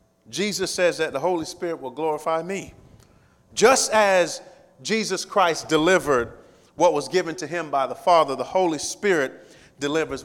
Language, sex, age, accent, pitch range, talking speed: English, male, 40-59, American, 130-165 Hz, 150 wpm